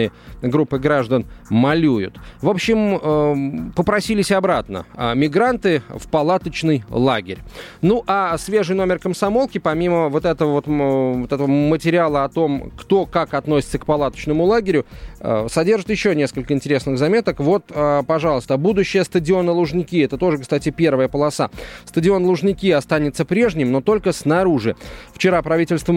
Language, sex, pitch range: Russian, male, 140-180 Hz